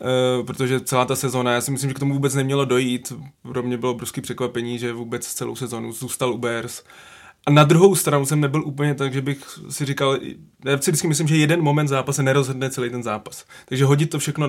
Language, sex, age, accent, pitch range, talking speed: Czech, male, 20-39, native, 125-135 Hz, 215 wpm